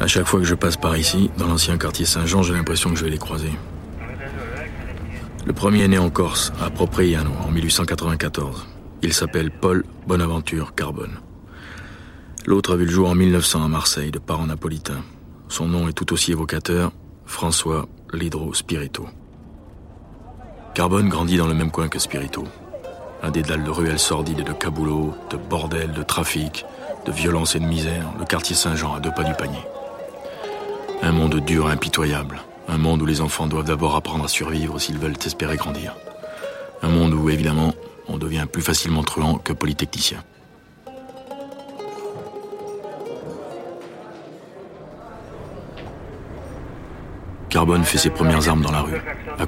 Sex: male